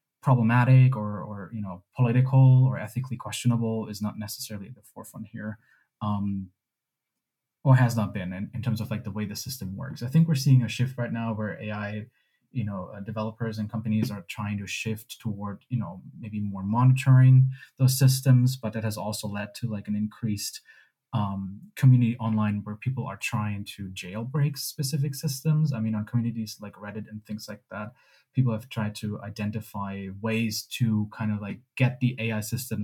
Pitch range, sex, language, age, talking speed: 105-125 Hz, male, English, 20-39, 190 wpm